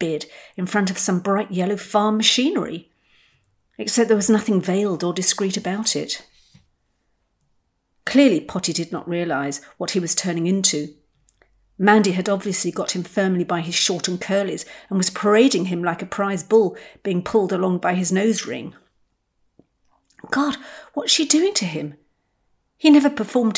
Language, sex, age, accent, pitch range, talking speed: English, female, 50-69, British, 160-200 Hz, 160 wpm